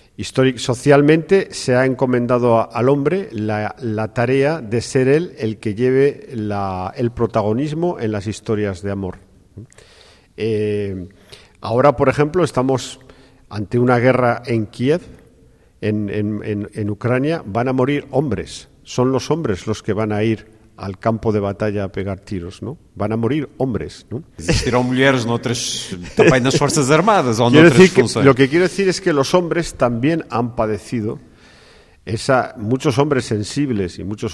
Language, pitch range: Portuguese, 100-130 Hz